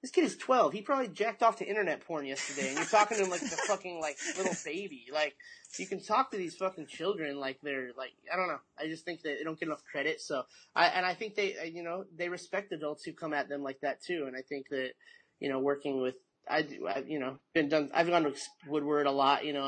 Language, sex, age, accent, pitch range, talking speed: English, male, 30-49, American, 130-175 Hz, 260 wpm